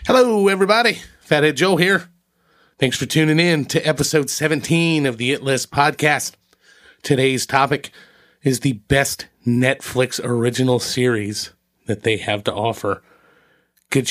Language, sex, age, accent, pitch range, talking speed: English, male, 30-49, American, 130-160 Hz, 130 wpm